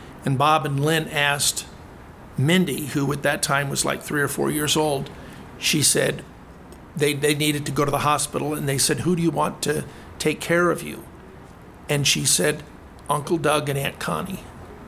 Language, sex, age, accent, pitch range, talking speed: English, male, 50-69, American, 140-170 Hz, 190 wpm